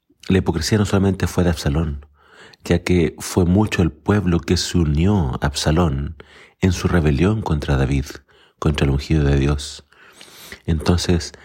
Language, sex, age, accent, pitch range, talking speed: Spanish, male, 40-59, Argentinian, 75-90 Hz, 150 wpm